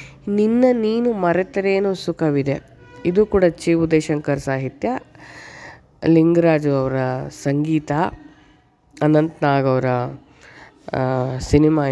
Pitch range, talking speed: 140-185 Hz, 70 wpm